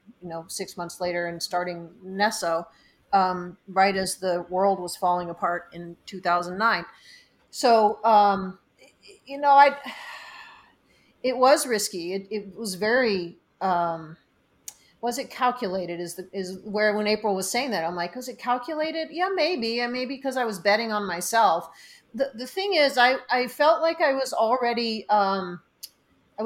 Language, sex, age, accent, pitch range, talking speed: English, female, 40-59, American, 180-230 Hz, 160 wpm